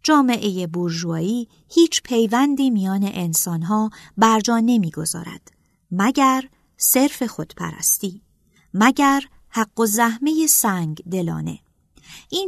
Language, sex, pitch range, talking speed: Persian, female, 180-240 Hz, 85 wpm